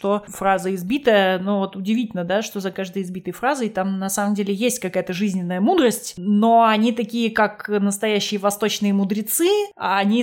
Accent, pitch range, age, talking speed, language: native, 195-230 Hz, 20-39, 170 wpm, Russian